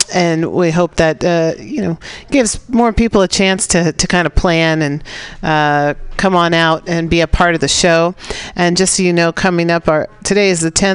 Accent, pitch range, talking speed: American, 145-180 Hz, 220 wpm